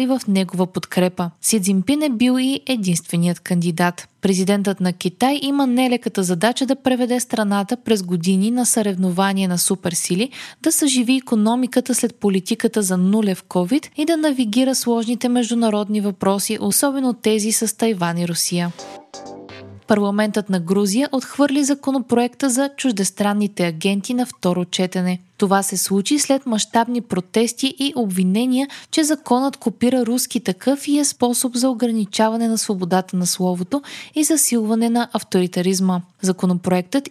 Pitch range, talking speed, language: 190-255 Hz, 135 wpm, Bulgarian